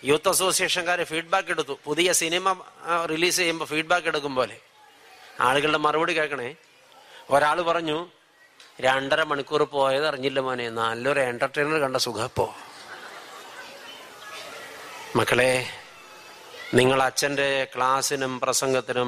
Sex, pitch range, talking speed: male, 130-170 Hz, 105 wpm